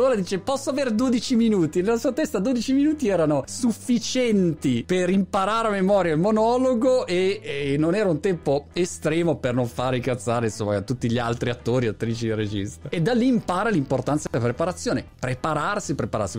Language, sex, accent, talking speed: Italian, male, native, 170 wpm